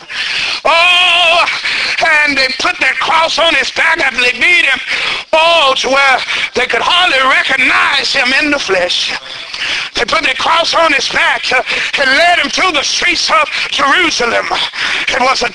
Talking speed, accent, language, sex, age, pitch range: 165 wpm, American, English, male, 50-69, 280-355 Hz